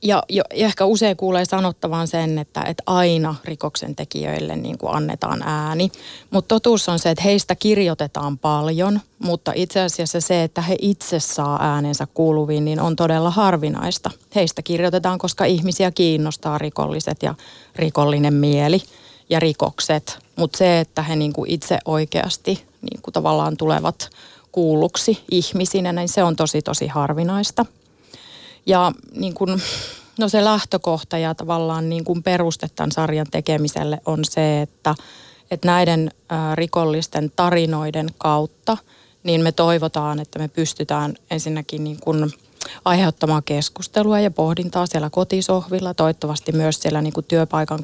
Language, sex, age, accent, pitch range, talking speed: Finnish, female, 30-49, native, 150-180 Hz, 135 wpm